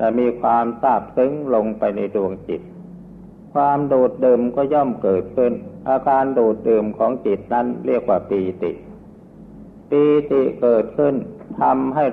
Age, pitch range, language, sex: 60-79, 115-150 Hz, Thai, male